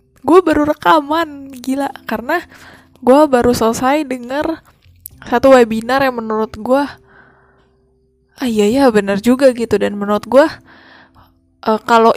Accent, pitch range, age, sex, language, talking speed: native, 200-245 Hz, 10-29, female, Indonesian, 125 wpm